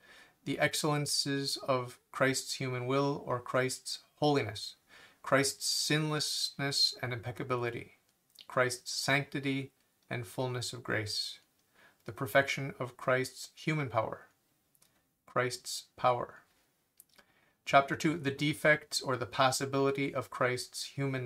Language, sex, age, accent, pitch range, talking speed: English, male, 40-59, American, 125-140 Hz, 105 wpm